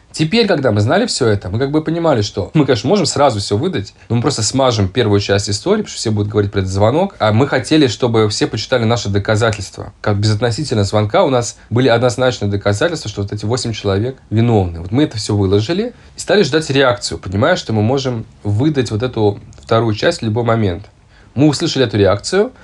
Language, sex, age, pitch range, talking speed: Russian, male, 20-39, 105-135 Hz, 210 wpm